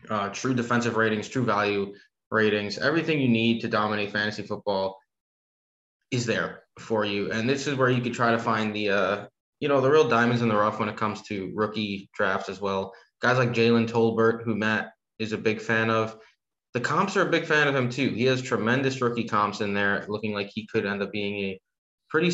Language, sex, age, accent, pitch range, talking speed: English, male, 20-39, American, 105-125 Hz, 220 wpm